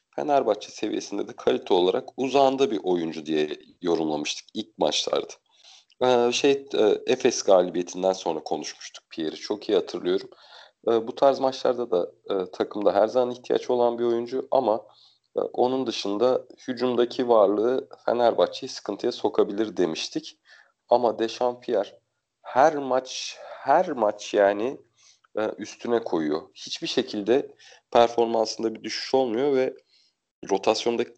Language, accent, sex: Turkish, native, male